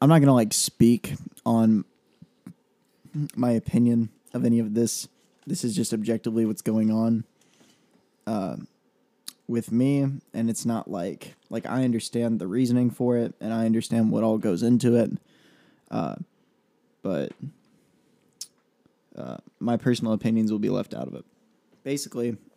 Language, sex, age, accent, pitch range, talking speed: English, male, 20-39, American, 110-120 Hz, 145 wpm